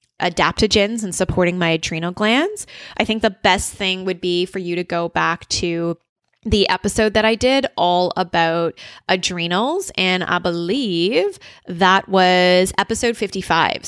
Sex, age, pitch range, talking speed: female, 20-39, 175-220 Hz, 145 wpm